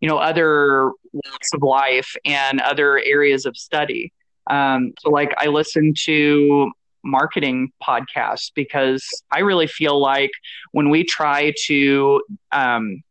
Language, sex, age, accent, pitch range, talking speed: English, male, 20-39, American, 135-160 Hz, 135 wpm